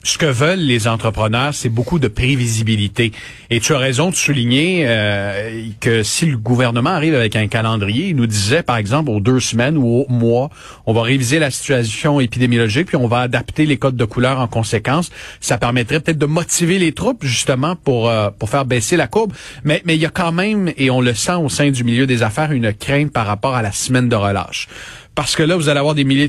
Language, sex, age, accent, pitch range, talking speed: French, male, 40-59, Canadian, 115-150 Hz, 230 wpm